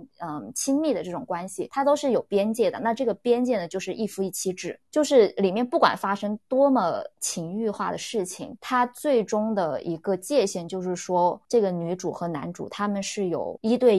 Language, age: Chinese, 20-39